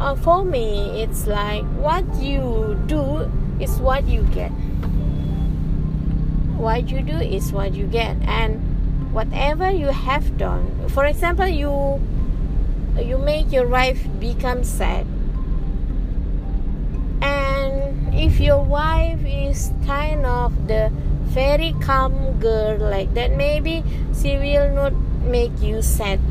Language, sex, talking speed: English, female, 120 wpm